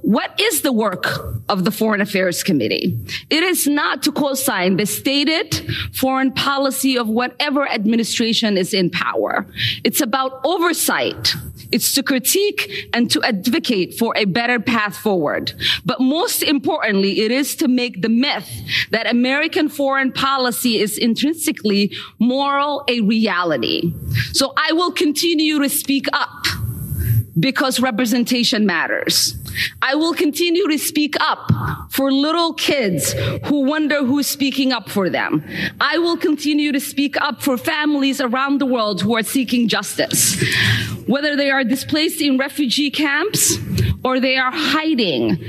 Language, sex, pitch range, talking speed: English, female, 225-290 Hz, 140 wpm